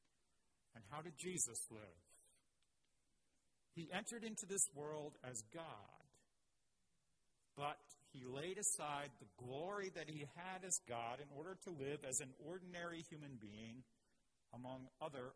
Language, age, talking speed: English, 50-69, 135 wpm